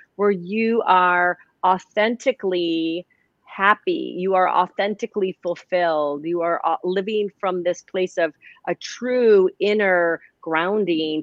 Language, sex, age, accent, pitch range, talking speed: English, female, 40-59, American, 170-210 Hz, 105 wpm